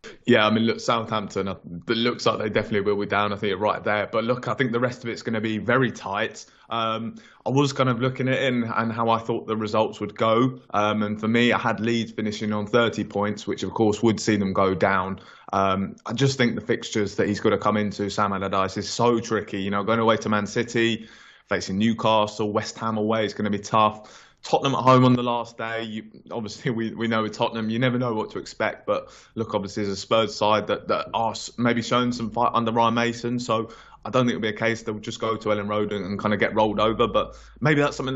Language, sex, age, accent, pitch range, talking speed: English, male, 20-39, British, 105-120 Hz, 255 wpm